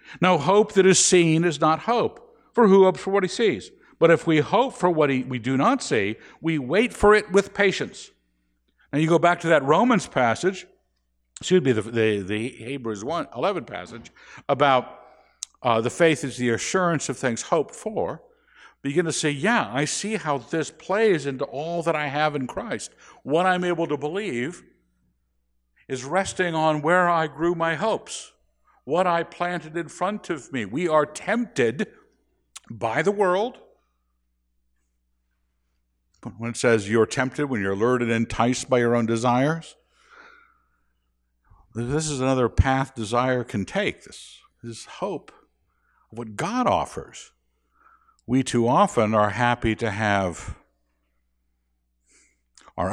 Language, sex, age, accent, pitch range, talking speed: English, male, 60-79, American, 105-175 Hz, 155 wpm